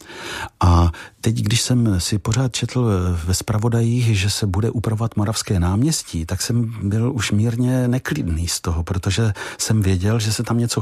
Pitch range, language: 95-115 Hz, Czech